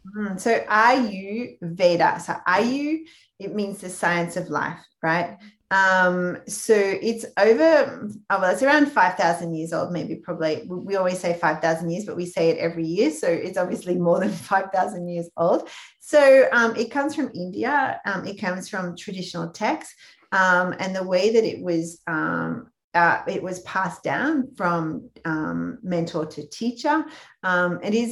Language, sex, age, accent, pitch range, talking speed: English, female, 30-49, Australian, 170-230 Hz, 160 wpm